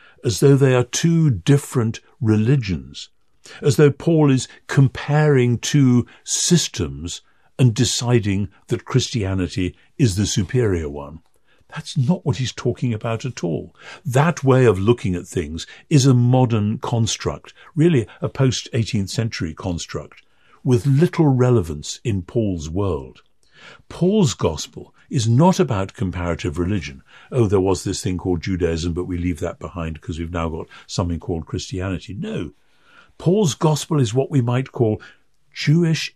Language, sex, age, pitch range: English, male, 60-79, 90-140 Hz